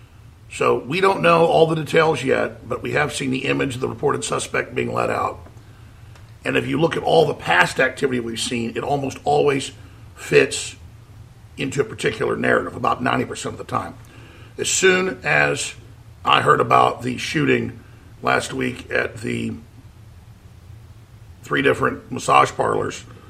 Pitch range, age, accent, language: 110-145 Hz, 50-69, American, English